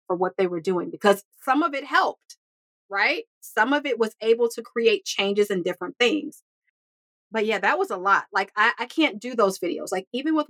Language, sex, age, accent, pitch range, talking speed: English, female, 30-49, American, 200-240 Hz, 210 wpm